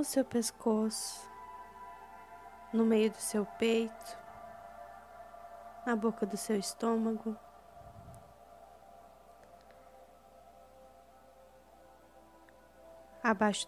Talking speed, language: 55 wpm, Portuguese